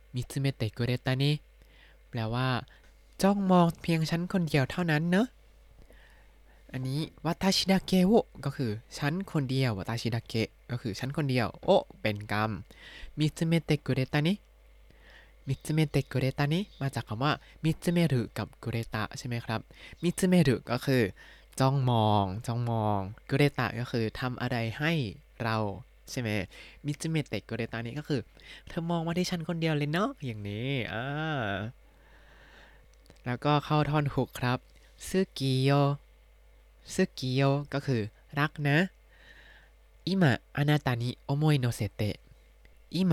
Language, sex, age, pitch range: Thai, male, 20-39, 115-155 Hz